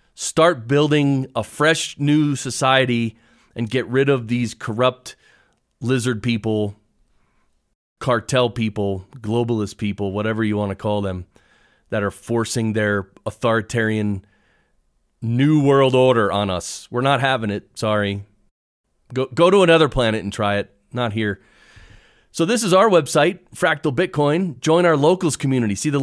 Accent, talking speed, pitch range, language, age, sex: American, 145 wpm, 115-160 Hz, English, 30-49, male